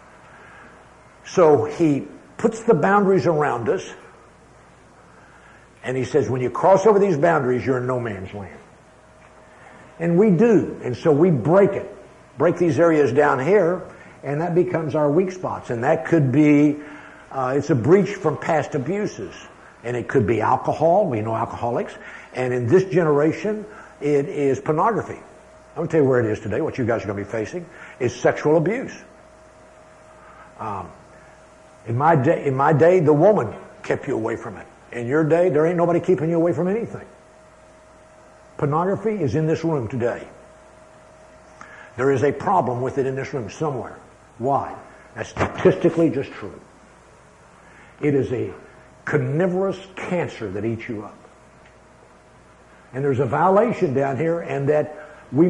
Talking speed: 160 wpm